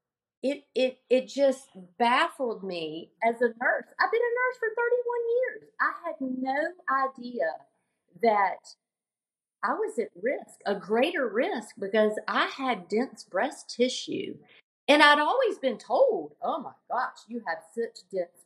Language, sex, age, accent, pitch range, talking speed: English, female, 40-59, American, 180-255 Hz, 150 wpm